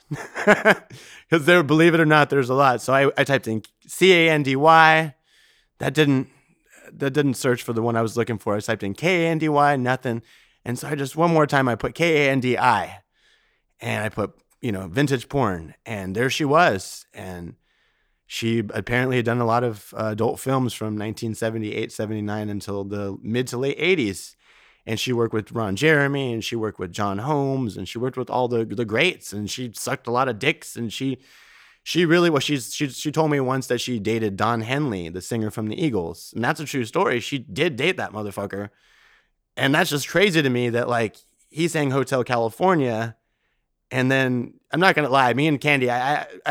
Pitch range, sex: 115-150 Hz, male